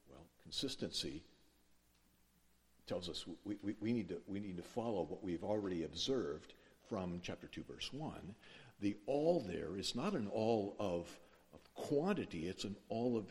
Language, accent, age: English, American, 60-79